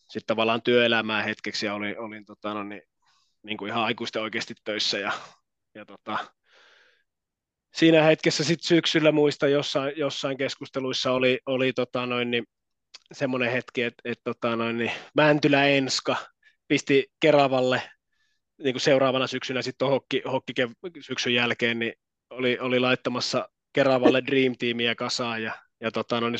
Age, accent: 20-39, native